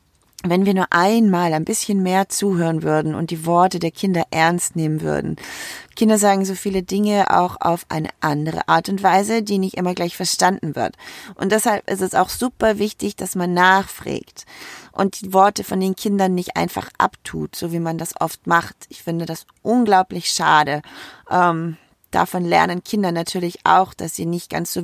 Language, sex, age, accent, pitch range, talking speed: German, female, 30-49, German, 170-200 Hz, 185 wpm